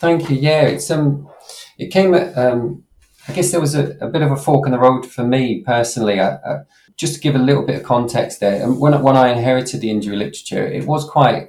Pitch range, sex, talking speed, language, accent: 105-135 Hz, male, 240 wpm, English, British